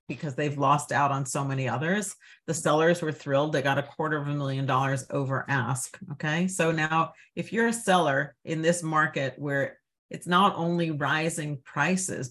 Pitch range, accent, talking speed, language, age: 140-175 Hz, American, 185 wpm, English, 50-69